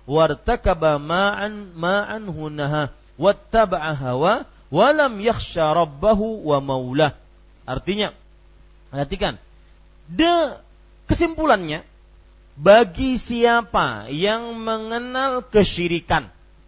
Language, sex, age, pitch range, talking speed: Malay, male, 40-59, 170-260 Hz, 80 wpm